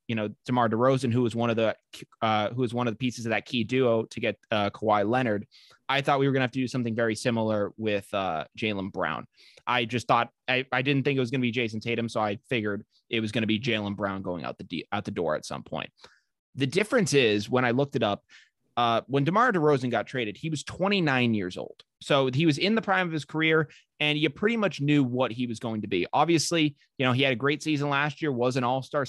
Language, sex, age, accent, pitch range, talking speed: English, male, 20-39, American, 115-150 Hz, 260 wpm